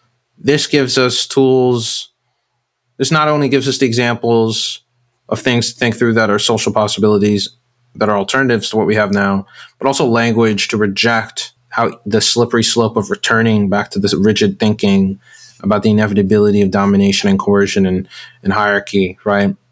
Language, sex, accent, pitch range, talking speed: English, male, American, 110-135 Hz, 165 wpm